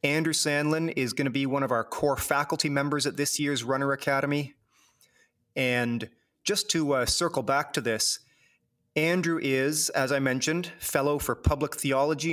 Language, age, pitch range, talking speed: English, 30-49, 125-150 Hz, 165 wpm